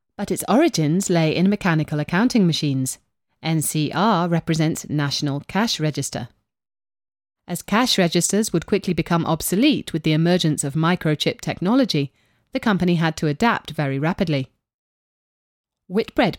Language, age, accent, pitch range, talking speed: English, 30-49, British, 145-200 Hz, 125 wpm